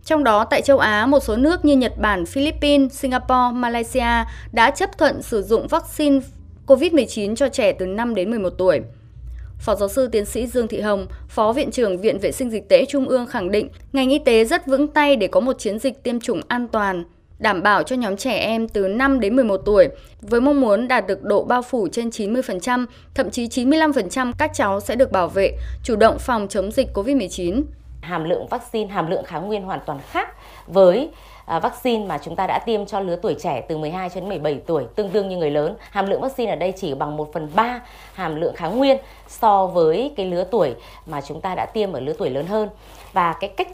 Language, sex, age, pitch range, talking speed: Vietnamese, female, 20-39, 190-265 Hz, 220 wpm